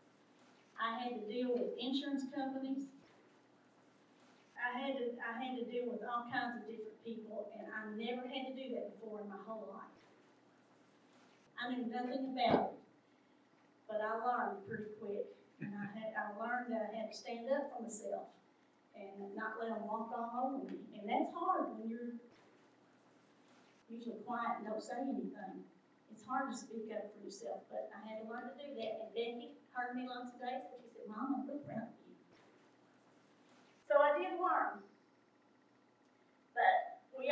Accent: American